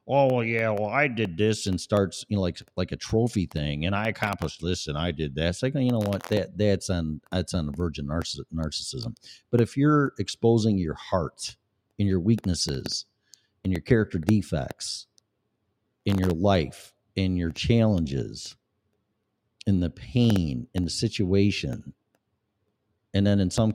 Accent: American